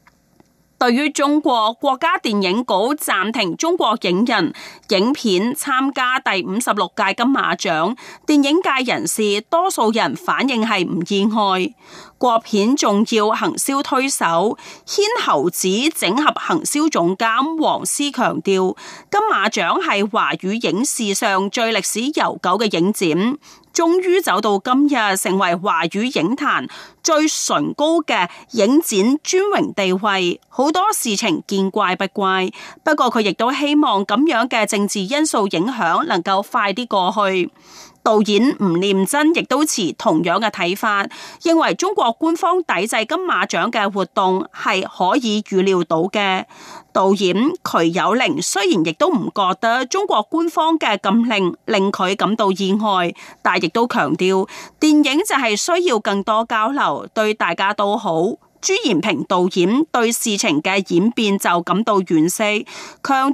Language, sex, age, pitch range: Chinese, female, 30-49, 195-300 Hz